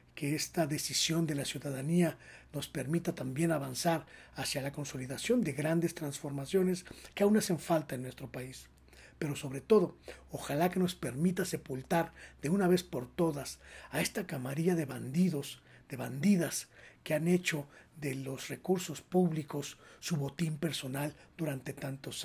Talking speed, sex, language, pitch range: 150 wpm, male, Spanish, 135-165 Hz